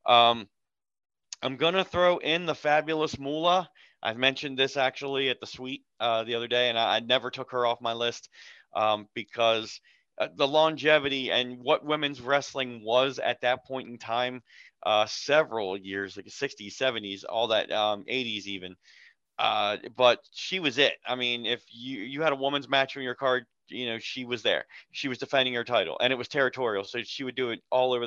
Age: 30-49